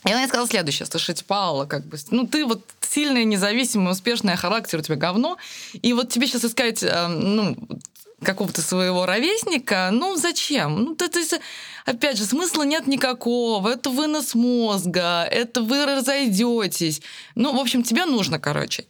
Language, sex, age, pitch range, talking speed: Russian, female, 20-39, 190-255 Hz, 160 wpm